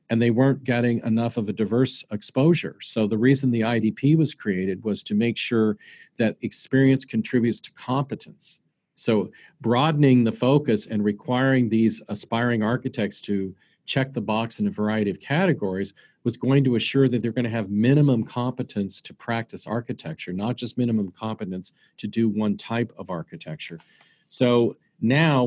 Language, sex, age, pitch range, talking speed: English, male, 40-59, 105-130 Hz, 165 wpm